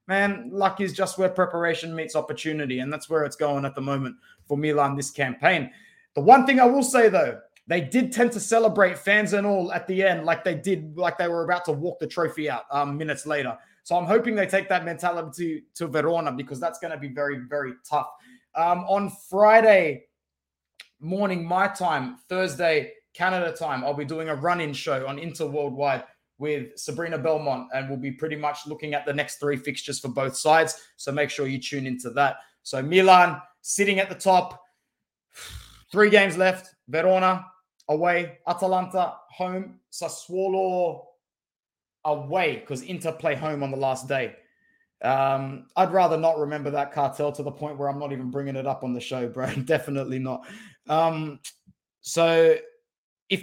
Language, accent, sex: English, Australian, male